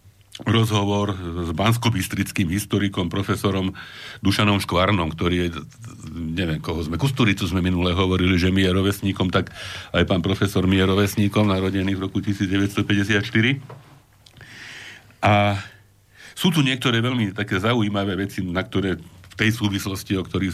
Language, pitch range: Slovak, 90-110 Hz